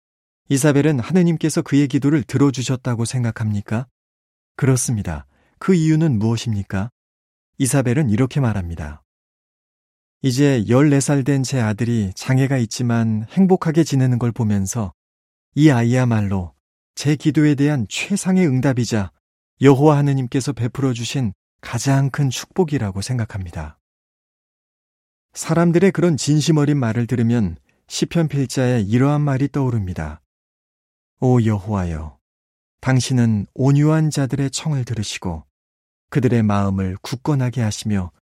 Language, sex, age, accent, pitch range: Korean, male, 40-59, native, 95-140 Hz